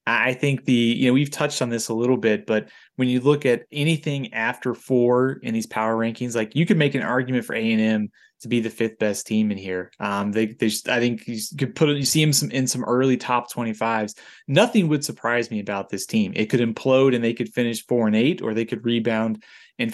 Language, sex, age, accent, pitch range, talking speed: English, male, 20-39, American, 115-140 Hz, 245 wpm